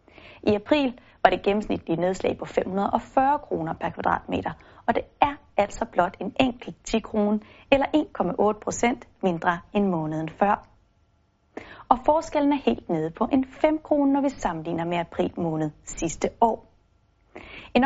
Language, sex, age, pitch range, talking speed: Danish, female, 30-49, 180-255 Hz, 150 wpm